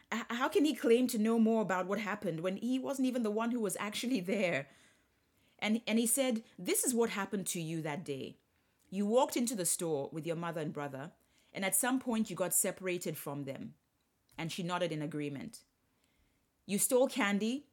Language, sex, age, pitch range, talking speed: English, female, 30-49, 170-230 Hz, 200 wpm